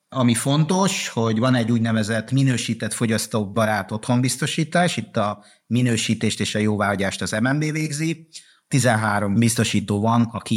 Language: Hungarian